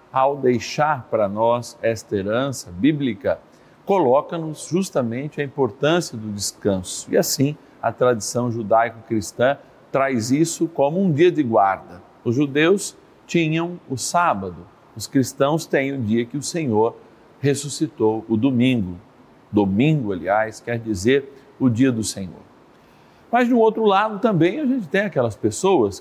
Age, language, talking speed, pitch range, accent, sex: 50-69, Portuguese, 140 wpm, 115-160 Hz, Brazilian, male